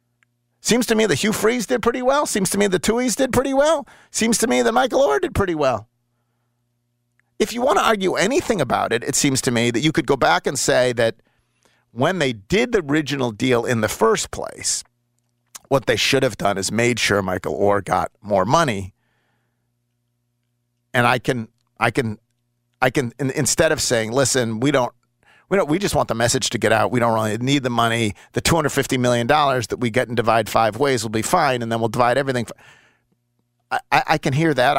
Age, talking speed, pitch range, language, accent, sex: 50-69, 205 wpm, 120-180 Hz, English, American, male